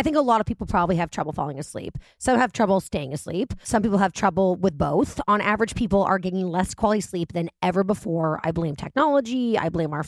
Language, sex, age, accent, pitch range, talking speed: English, female, 30-49, American, 170-220 Hz, 230 wpm